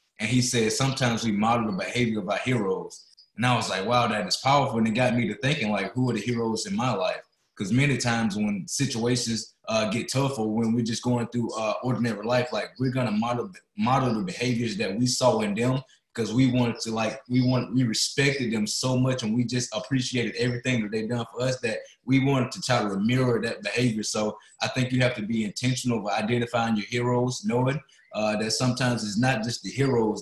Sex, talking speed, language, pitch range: male, 225 wpm, English, 110-125 Hz